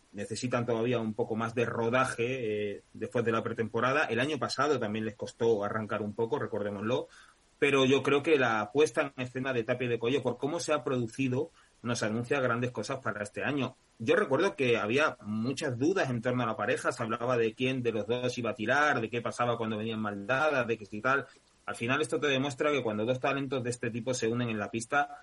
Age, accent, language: 30-49, Spanish, Spanish